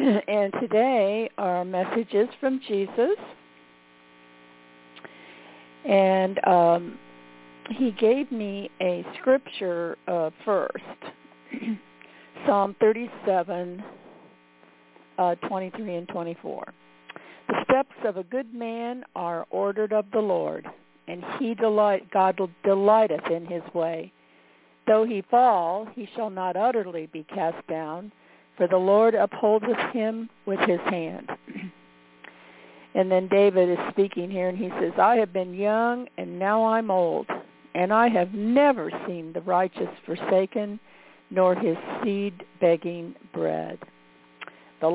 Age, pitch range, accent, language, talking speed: 50-69, 150-220 Hz, American, English, 120 wpm